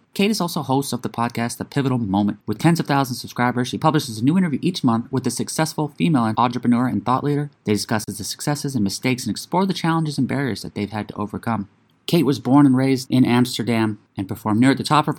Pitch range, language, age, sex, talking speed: 105-135 Hz, English, 30-49, male, 240 wpm